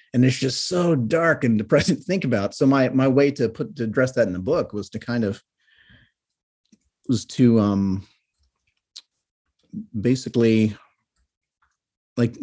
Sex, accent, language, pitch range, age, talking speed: male, American, English, 95-120 Hz, 30-49, 150 wpm